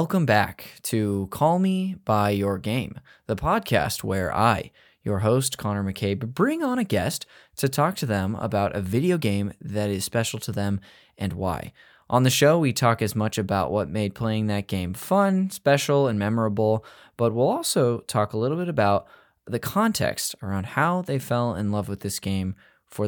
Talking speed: 185 wpm